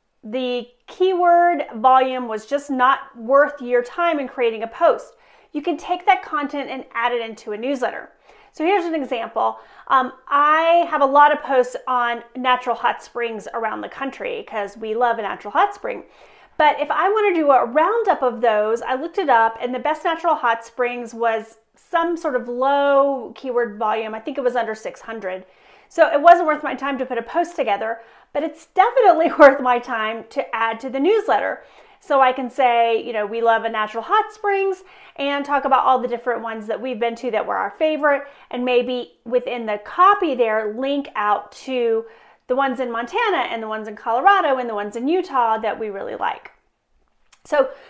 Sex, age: female, 30-49